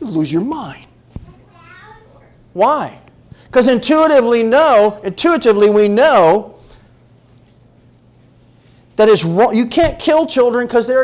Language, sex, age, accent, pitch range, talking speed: English, male, 50-69, American, 120-160 Hz, 100 wpm